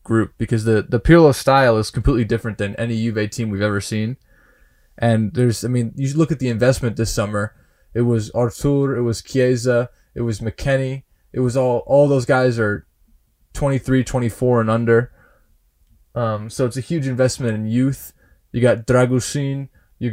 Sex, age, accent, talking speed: male, 20-39, American, 180 wpm